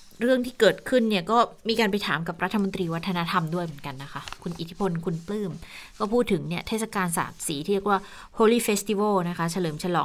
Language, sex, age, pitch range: Thai, female, 20-39, 165-200 Hz